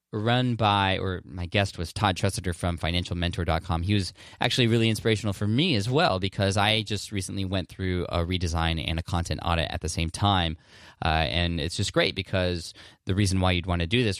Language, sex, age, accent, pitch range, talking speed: English, male, 20-39, American, 85-105 Hz, 205 wpm